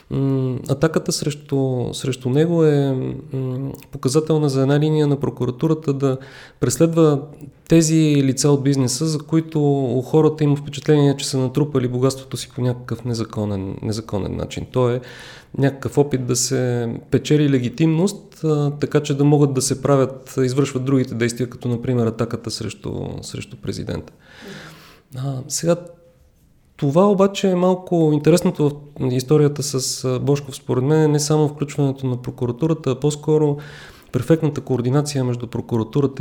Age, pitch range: 30-49, 125-150 Hz